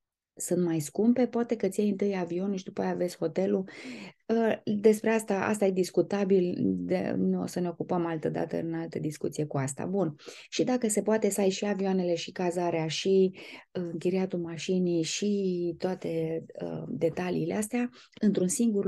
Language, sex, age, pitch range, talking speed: Romanian, female, 20-39, 175-230 Hz, 170 wpm